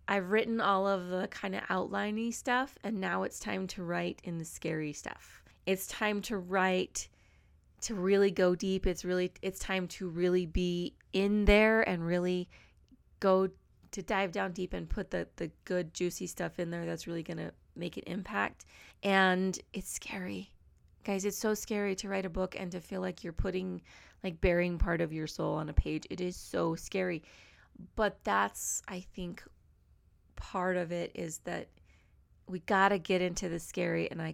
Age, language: 20-39, English